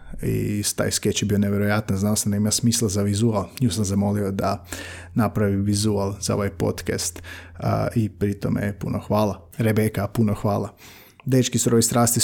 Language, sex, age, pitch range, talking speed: Croatian, male, 30-49, 105-120 Hz, 160 wpm